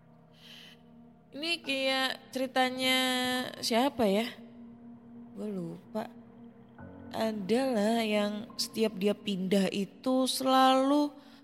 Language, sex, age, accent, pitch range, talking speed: Indonesian, female, 20-39, native, 175-230 Hz, 75 wpm